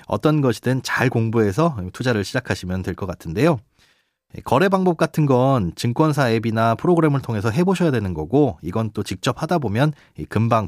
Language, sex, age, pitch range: Korean, male, 30-49, 105-165 Hz